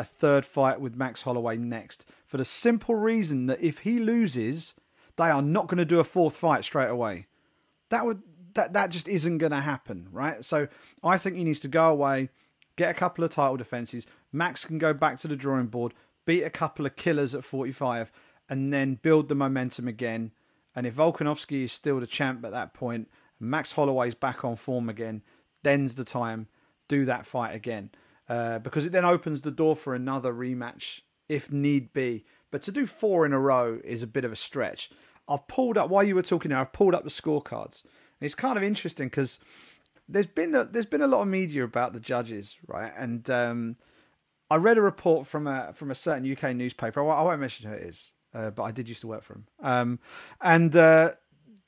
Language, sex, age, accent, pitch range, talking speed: English, male, 40-59, British, 125-165 Hz, 210 wpm